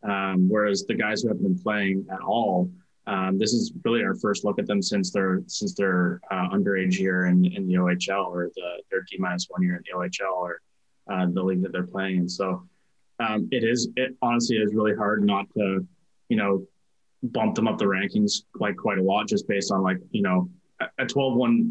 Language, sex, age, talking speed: English, male, 20-39, 215 wpm